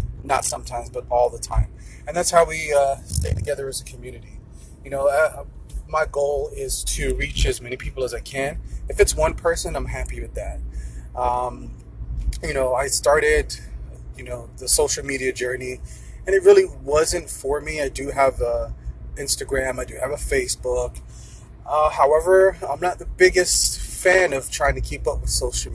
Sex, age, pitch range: male, 30-49, 115-150 Hz